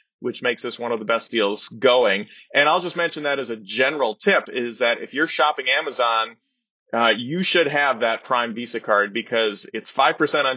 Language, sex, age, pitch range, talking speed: English, male, 30-49, 120-165 Hz, 205 wpm